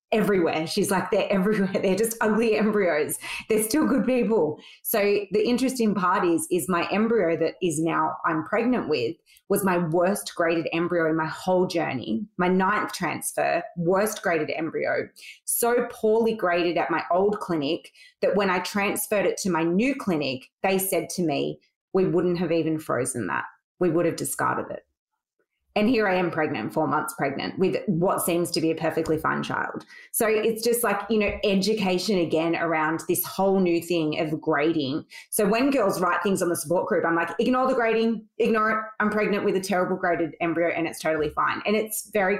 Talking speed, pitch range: 190 wpm, 165-215 Hz